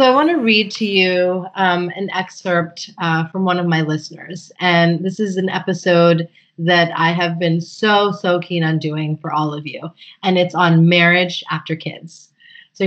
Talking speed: 190 wpm